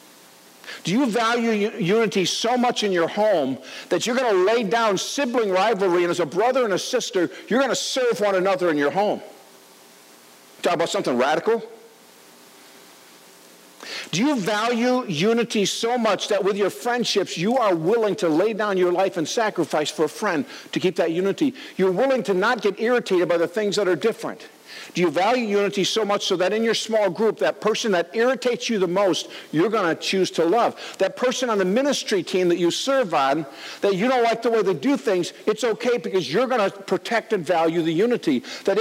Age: 50-69